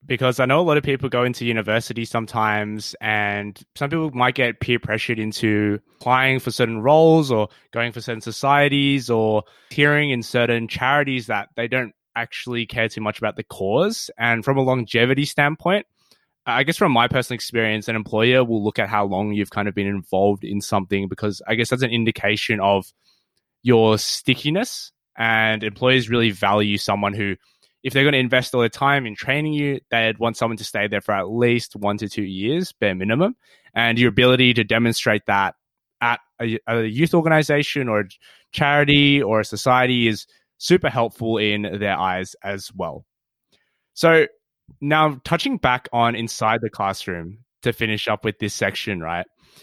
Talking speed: 180 wpm